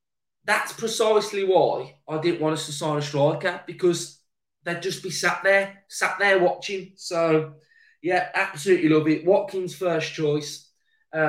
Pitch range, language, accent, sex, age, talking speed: 150-190 Hz, English, British, male, 20-39, 155 wpm